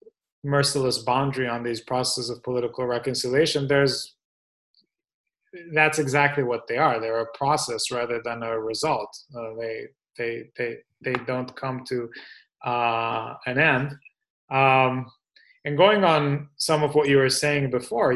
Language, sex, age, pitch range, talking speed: English, male, 20-39, 125-150 Hz, 140 wpm